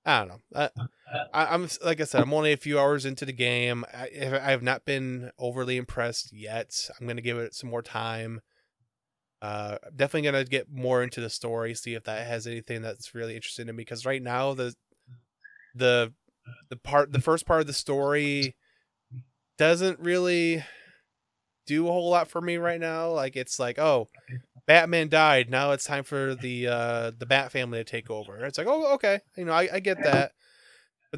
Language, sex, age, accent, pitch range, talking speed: English, male, 20-39, American, 120-165 Hz, 195 wpm